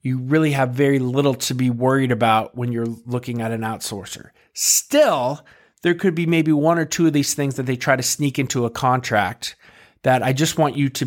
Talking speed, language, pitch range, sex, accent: 215 wpm, English, 120-145 Hz, male, American